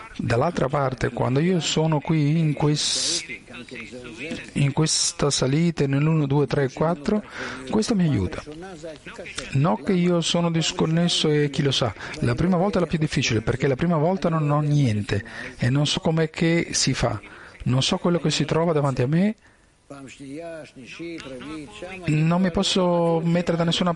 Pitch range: 140-180 Hz